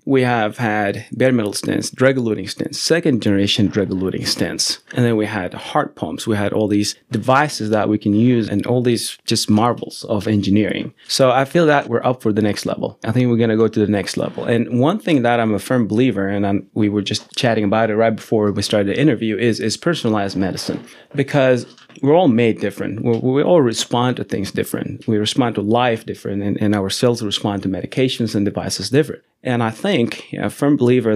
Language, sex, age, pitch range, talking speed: English, male, 30-49, 105-125 Hz, 215 wpm